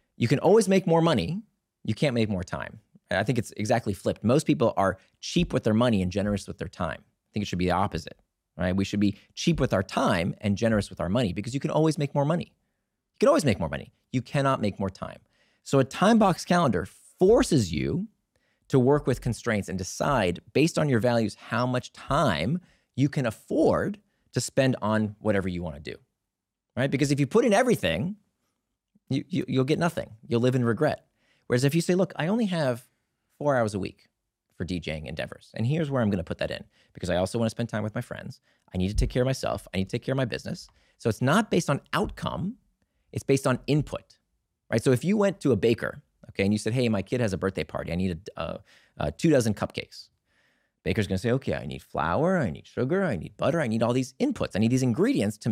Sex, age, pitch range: male, 30-49, 100-145 Hz